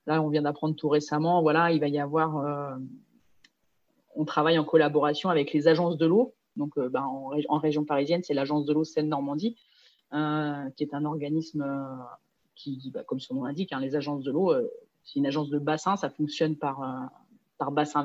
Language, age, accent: French, 30-49, French